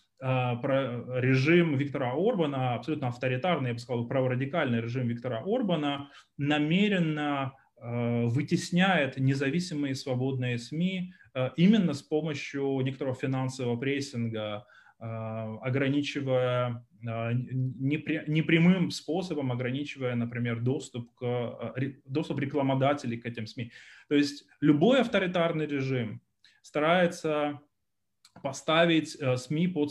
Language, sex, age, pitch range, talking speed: Ukrainian, male, 20-39, 130-160 Hz, 90 wpm